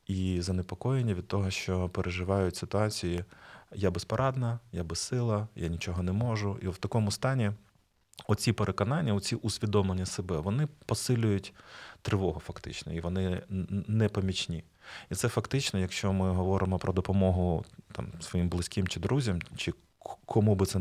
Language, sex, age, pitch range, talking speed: Ukrainian, male, 30-49, 95-110 Hz, 140 wpm